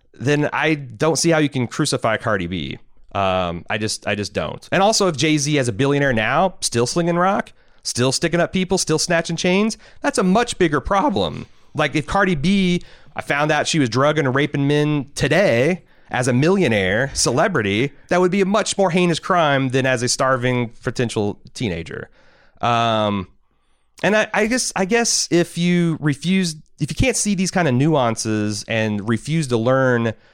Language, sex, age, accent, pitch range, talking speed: English, male, 30-49, American, 105-160 Hz, 185 wpm